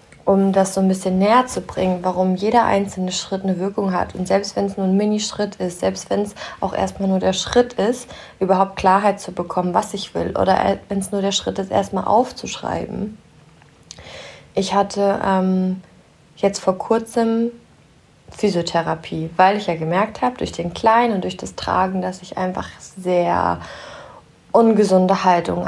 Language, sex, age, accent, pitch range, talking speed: German, female, 20-39, German, 175-200 Hz, 170 wpm